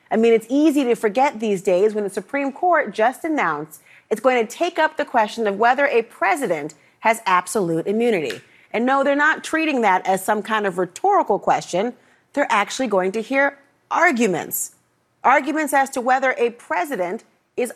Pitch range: 210-275 Hz